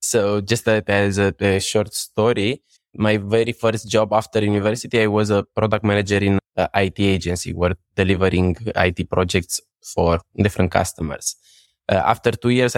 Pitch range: 95-110 Hz